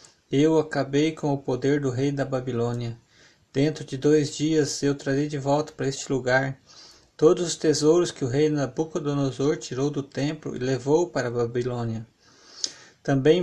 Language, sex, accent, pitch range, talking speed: Portuguese, male, Brazilian, 130-155 Hz, 160 wpm